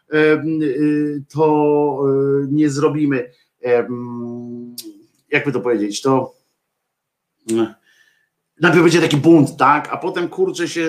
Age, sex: 50-69, male